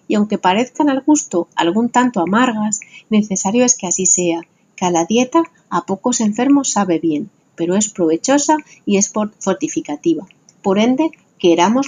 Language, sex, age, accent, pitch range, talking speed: Spanish, female, 30-49, Spanish, 180-255 Hz, 155 wpm